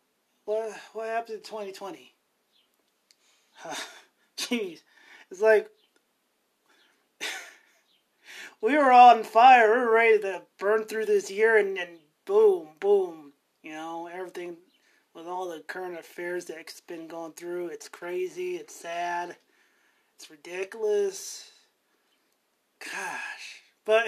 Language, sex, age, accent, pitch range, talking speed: English, male, 30-49, American, 180-285 Hz, 110 wpm